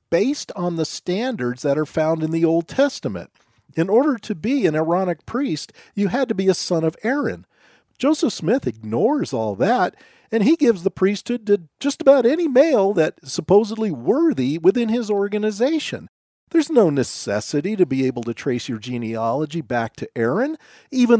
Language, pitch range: English, 150-235 Hz